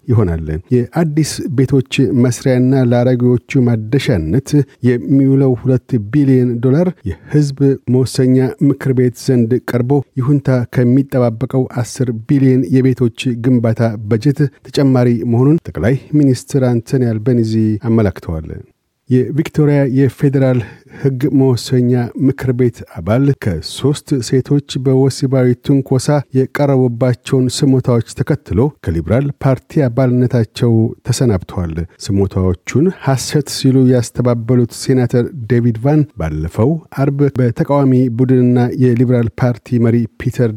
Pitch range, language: 115-135 Hz, Amharic